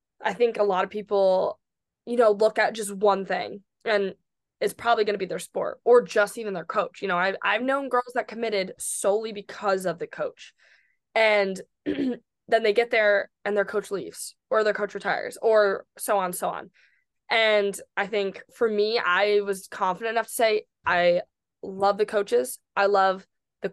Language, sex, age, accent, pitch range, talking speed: English, female, 20-39, American, 195-235 Hz, 190 wpm